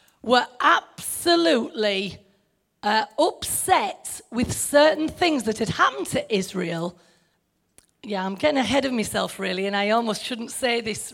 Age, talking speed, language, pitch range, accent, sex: 40-59, 135 wpm, English, 215-335 Hz, British, female